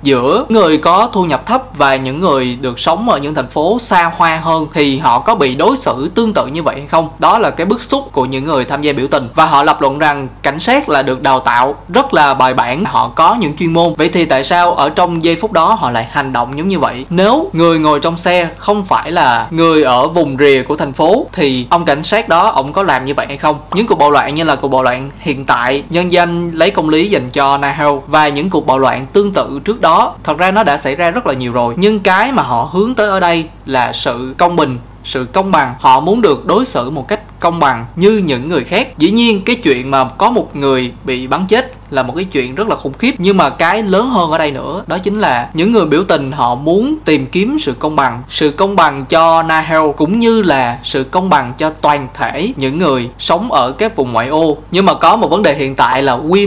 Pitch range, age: 135-185 Hz, 20-39